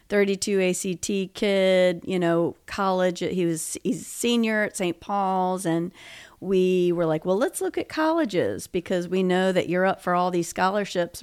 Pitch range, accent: 170-200 Hz, American